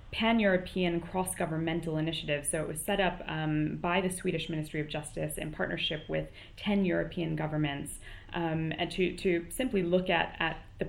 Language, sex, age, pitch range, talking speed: English, female, 20-39, 160-190 Hz, 165 wpm